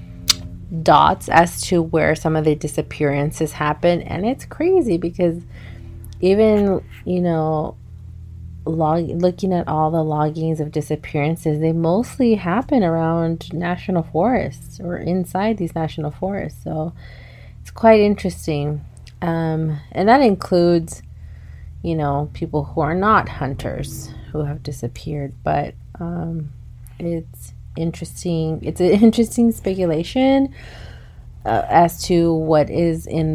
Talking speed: 120 wpm